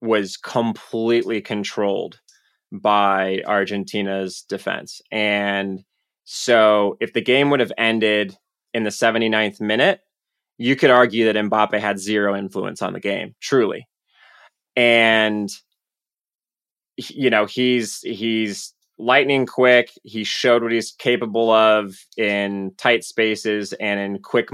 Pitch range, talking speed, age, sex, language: 100-115 Hz, 120 wpm, 20-39, male, English